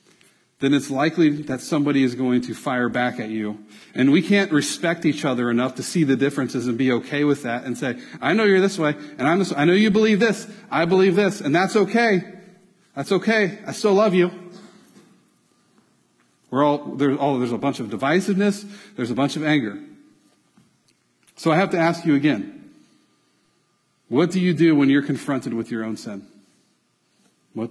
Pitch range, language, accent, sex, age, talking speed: 130-195 Hz, English, American, male, 40-59, 190 wpm